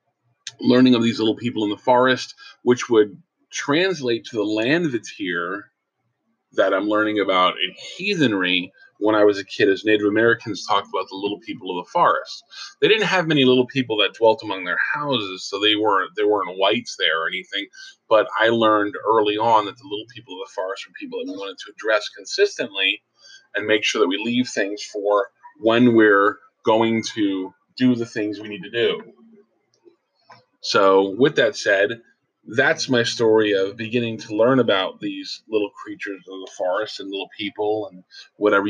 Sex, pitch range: male, 105-130 Hz